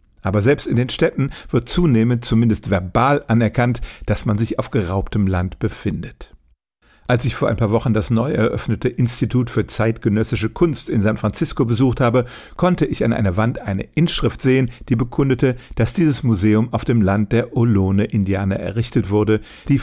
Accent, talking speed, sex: German, 170 wpm, male